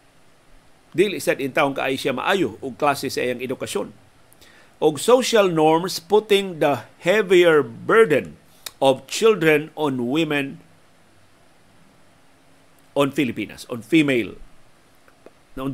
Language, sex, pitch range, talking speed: Filipino, male, 135-180 Hz, 105 wpm